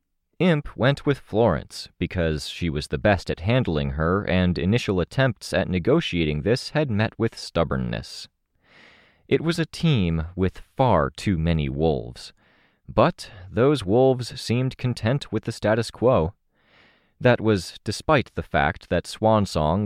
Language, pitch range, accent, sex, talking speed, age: English, 80-115 Hz, American, male, 140 wpm, 30-49